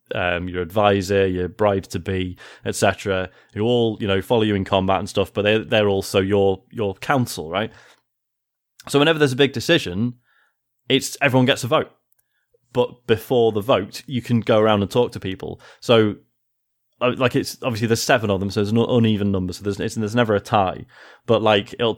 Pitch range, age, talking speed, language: 95-120 Hz, 20-39, 190 wpm, English